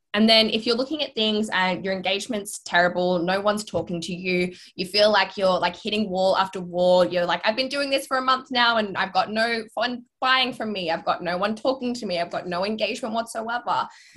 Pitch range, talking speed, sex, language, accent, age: 175-225 Hz, 235 wpm, female, English, Australian, 10-29